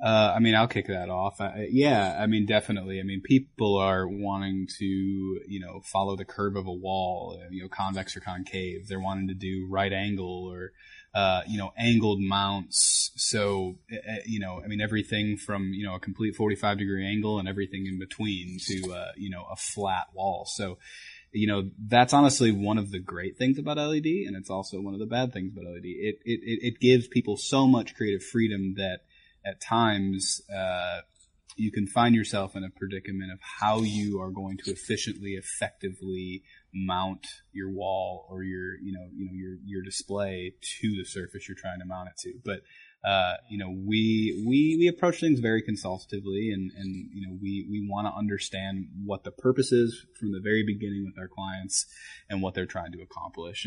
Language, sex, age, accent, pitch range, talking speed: English, male, 20-39, American, 95-105 Hz, 200 wpm